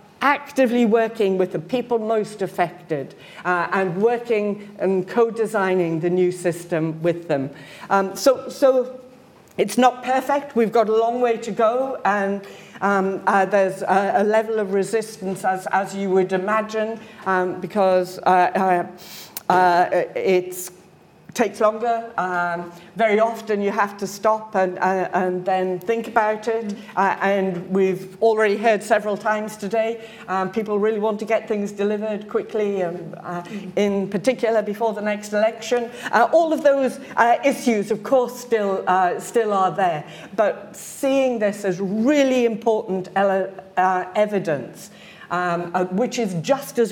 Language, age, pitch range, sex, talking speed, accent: English, 50-69, 185-225 Hz, female, 150 wpm, British